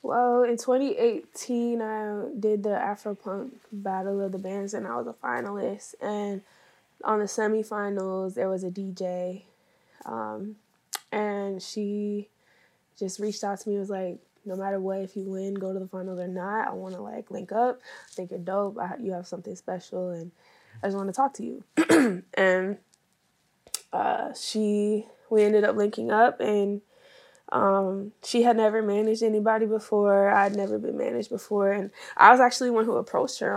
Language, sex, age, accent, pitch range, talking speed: English, female, 10-29, American, 195-220 Hz, 175 wpm